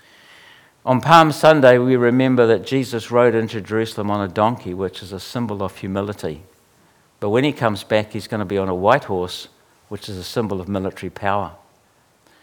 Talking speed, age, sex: 190 wpm, 60-79, male